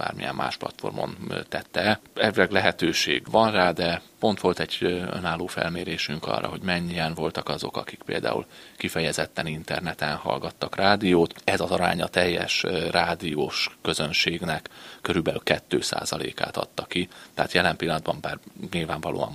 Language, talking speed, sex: Hungarian, 125 wpm, male